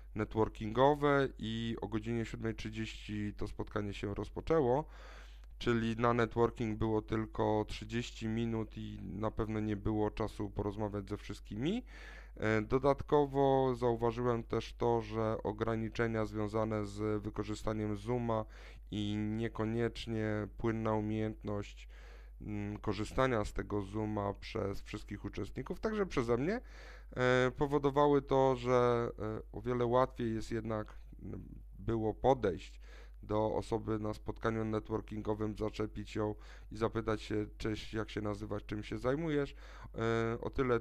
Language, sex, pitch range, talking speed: Polish, male, 105-120 Hz, 115 wpm